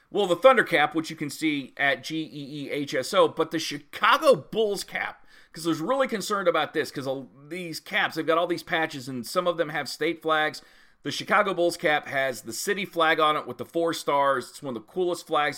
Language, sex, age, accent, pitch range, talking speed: English, male, 40-59, American, 125-170 Hz, 245 wpm